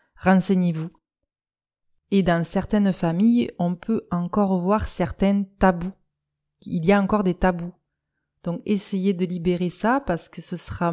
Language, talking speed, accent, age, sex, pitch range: French, 145 wpm, French, 30-49, female, 175-210 Hz